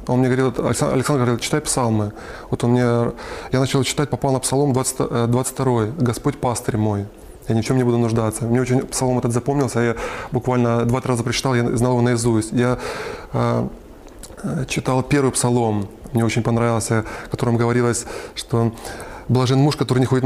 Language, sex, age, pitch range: Russian, male, 20-39, 120-135 Hz